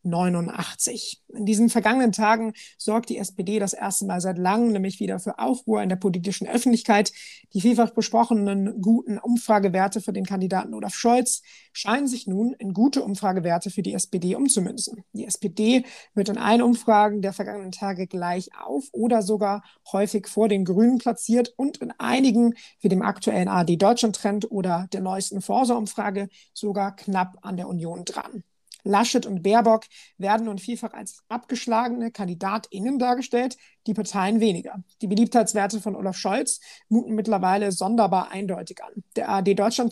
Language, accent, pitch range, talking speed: German, German, 190-225 Hz, 155 wpm